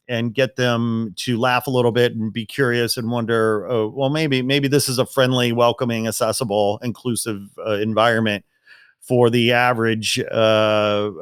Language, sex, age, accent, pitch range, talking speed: English, male, 40-59, American, 105-130 Hz, 160 wpm